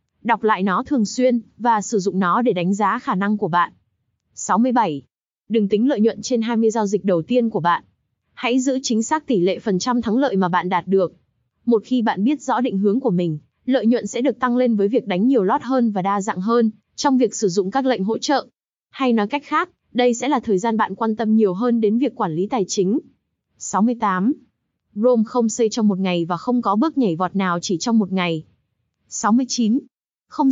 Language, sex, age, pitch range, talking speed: Vietnamese, female, 20-39, 195-250 Hz, 230 wpm